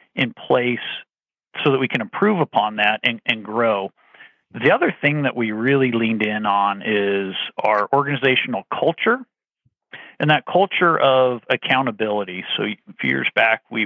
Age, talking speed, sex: 40-59, 155 wpm, male